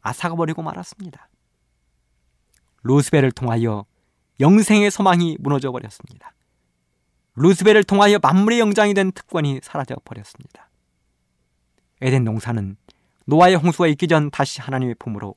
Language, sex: Korean, male